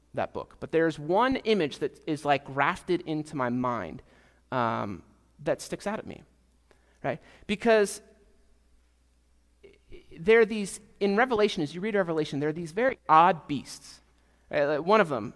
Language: English